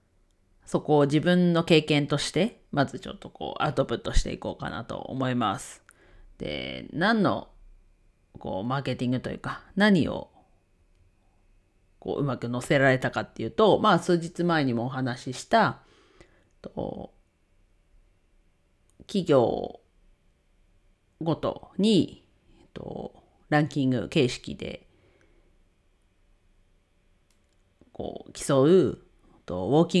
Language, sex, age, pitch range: Japanese, female, 40-59, 95-155 Hz